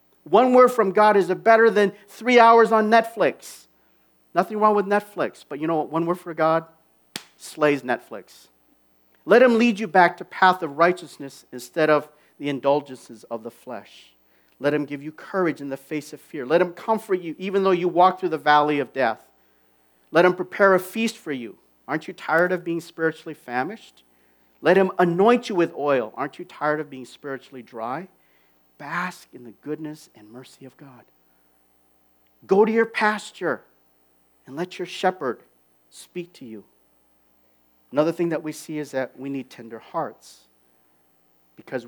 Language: English